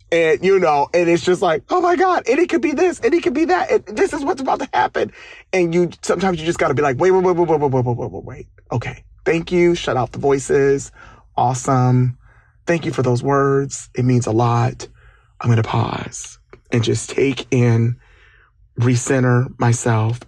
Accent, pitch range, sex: American, 115-135 Hz, male